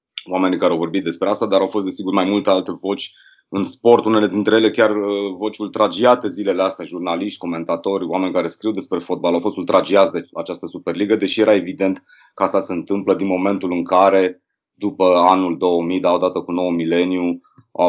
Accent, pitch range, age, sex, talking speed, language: native, 85-110 Hz, 30-49, male, 190 wpm, Romanian